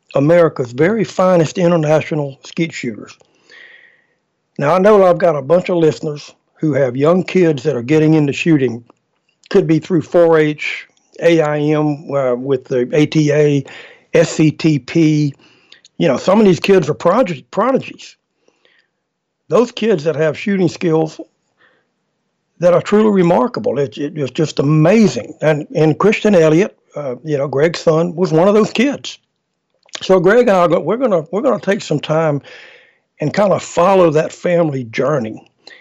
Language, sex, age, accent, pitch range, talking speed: English, male, 60-79, American, 145-185 Hz, 150 wpm